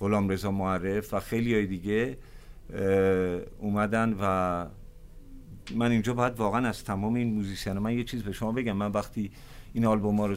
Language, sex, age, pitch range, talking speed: Persian, male, 50-69, 95-120 Hz, 170 wpm